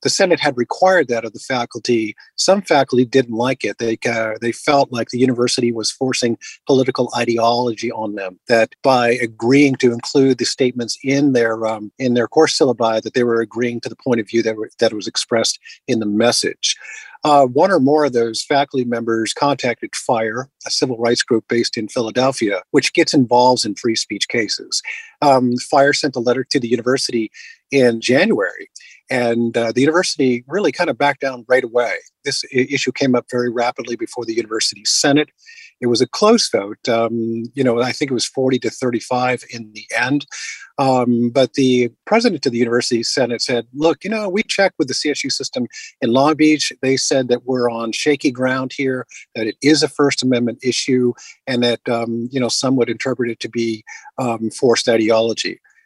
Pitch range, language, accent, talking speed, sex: 115-140 Hz, English, American, 195 wpm, male